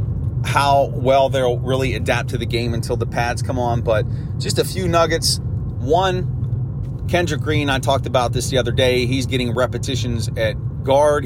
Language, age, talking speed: English, 30-49, 175 wpm